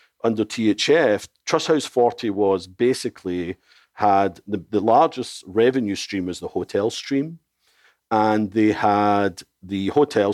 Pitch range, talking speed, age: 95-115 Hz, 130 wpm, 50-69